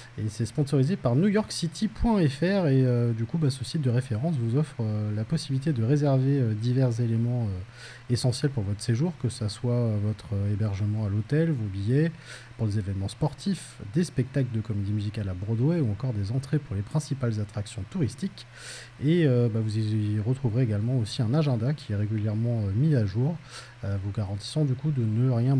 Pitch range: 110-145 Hz